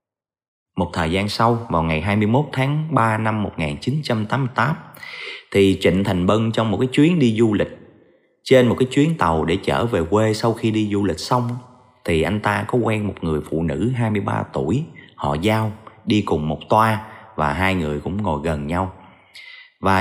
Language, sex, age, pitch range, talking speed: Vietnamese, male, 30-49, 90-120 Hz, 185 wpm